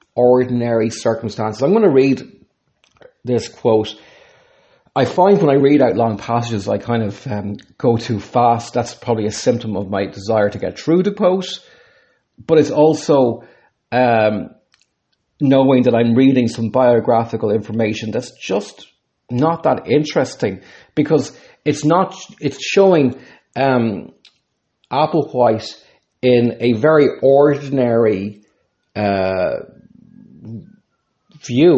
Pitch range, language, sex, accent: 105-140 Hz, English, male, Irish